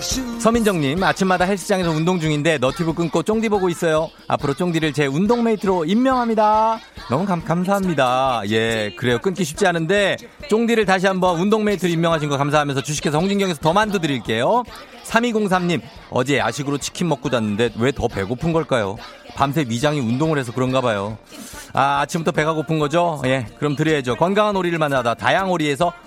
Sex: male